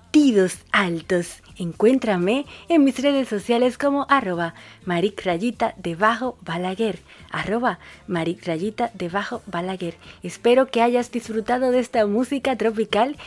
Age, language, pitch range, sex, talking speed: 30-49, Spanish, 185-250 Hz, female, 110 wpm